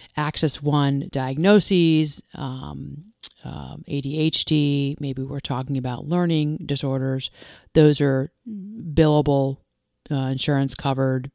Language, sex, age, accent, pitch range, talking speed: English, female, 30-49, American, 130-155 Hz, 100 wpm